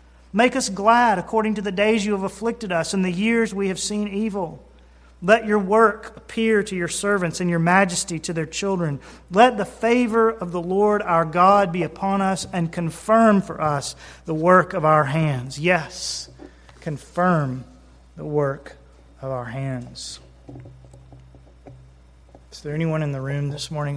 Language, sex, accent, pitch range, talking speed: English, male, American, 140-190 Hz, 165 wpm